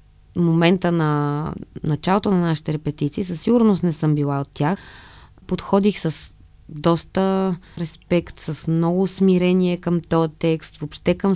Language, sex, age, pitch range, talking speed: Bulgarian, female, 20-39, 145-175 Hz, 130 wpm